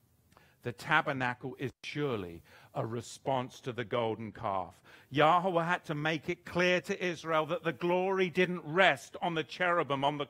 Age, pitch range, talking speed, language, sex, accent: 40-59, 125-180 Hz, 165 wpm, English, male, British